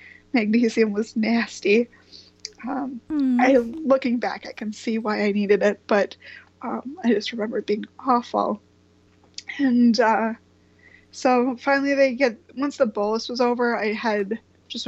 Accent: American